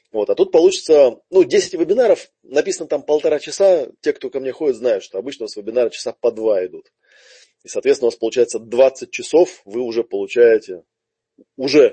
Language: Russian